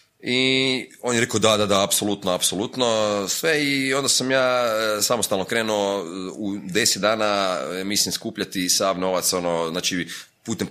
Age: 30-49